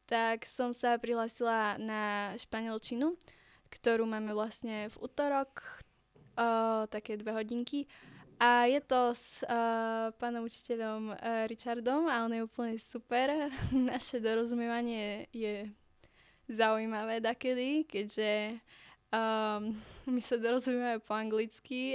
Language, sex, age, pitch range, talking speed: Slovak, female, 10-29, 220-245 Hz, 110 wpm